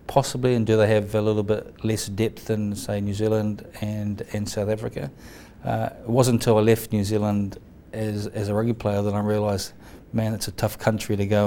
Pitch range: 100-115 Hz